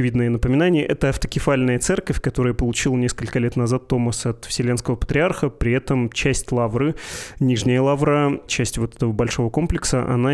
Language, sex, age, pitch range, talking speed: Russian, male, 20-39, 120-140 Hz, 150 wpm